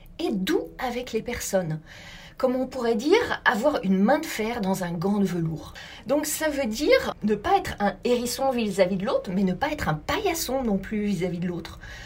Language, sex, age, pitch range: French, female, 40-59, 190-265 Hz